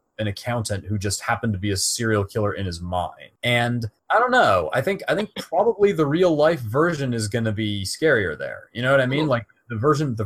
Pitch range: 100-130 Hz